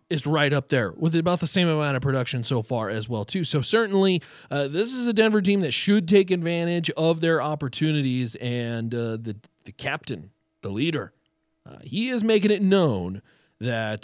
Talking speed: 190 wpm